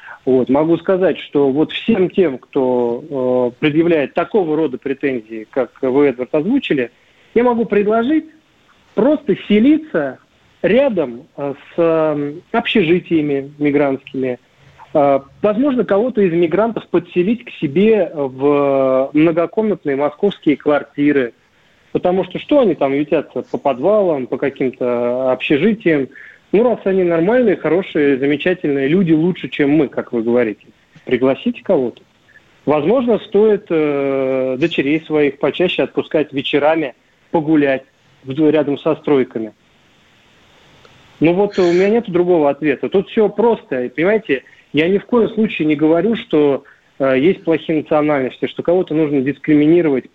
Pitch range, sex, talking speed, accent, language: 135-185 Hz, male, 125 wpm, native, Russian